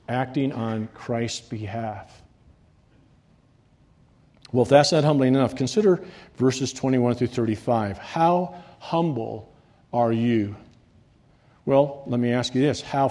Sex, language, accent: male, English, American